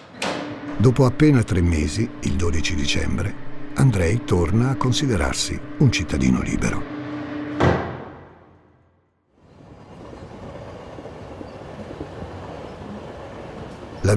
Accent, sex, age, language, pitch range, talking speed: native, male, 60-79, Italian, 85-115 Hz, 65 wpm